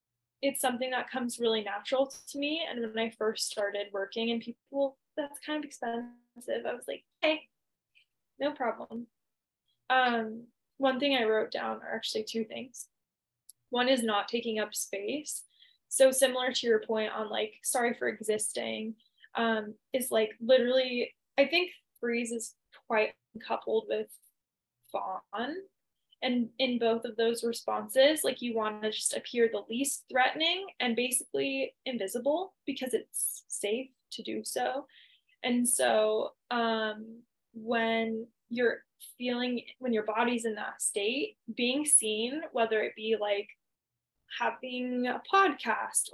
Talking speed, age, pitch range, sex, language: 140 wpm, 10-29, 220-260 Hz, female, English